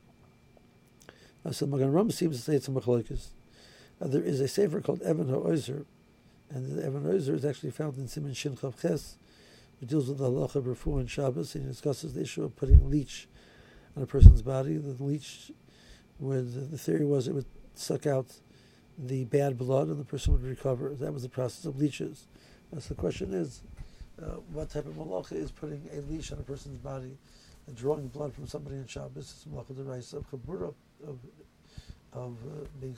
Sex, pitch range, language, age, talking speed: male, 130-150 Hz, English, 60-79, 195 wpm